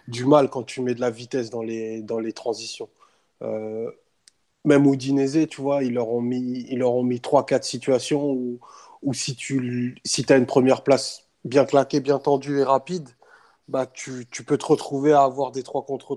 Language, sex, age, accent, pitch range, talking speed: French, male, 20-39, French, 125-140 Hz, 200 wpm